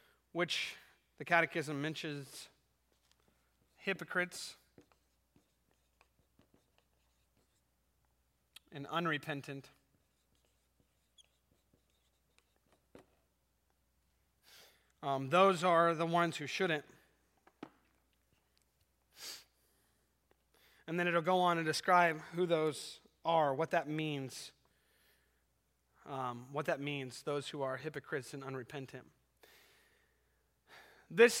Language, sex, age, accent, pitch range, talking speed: English, male, 30-49, American, 135-180 Hz, 75 wpm